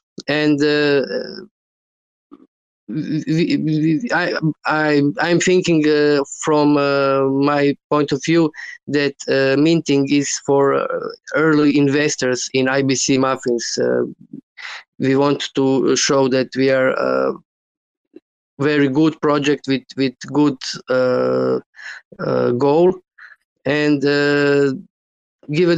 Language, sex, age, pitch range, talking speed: English, male, 20-39, 130-155 Hz, 105 wpm